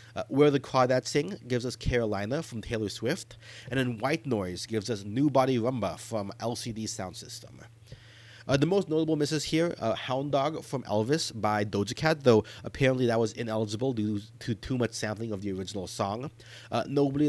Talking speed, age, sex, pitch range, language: 185 wpm, 30-49, male, 110-135 Hz, English